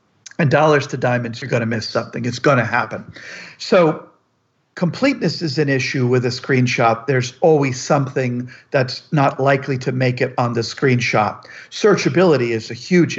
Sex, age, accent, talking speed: male, 50-69, American, 170 wpm